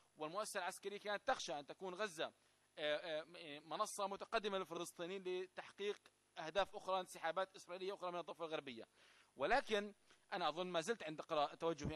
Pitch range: 160-195 Hz